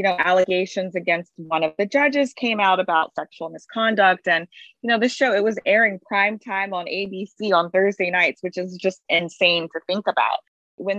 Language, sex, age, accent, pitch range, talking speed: English, female, 20-39, American, 180-240 Hz, 190 wpm